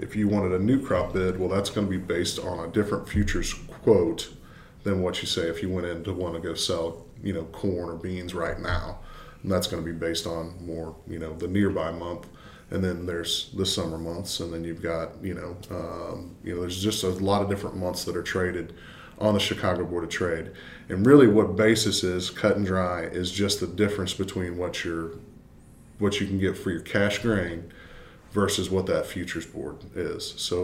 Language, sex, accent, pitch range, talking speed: English, male, American, 85-100 Hz, 220 wpm